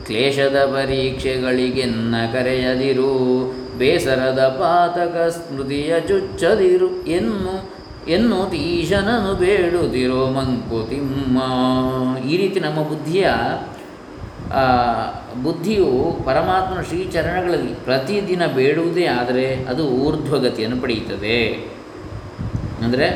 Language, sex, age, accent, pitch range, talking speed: Kannada, male, 20-39, native, 115-150 Hz, 70 wpm